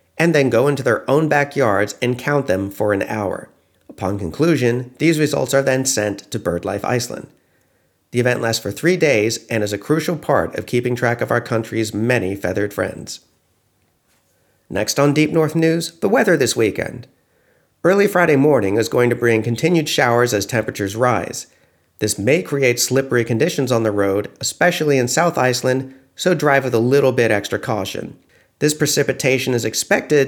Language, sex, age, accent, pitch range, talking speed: English, male, 40-59, American, 105-150 Hz, 175 wpm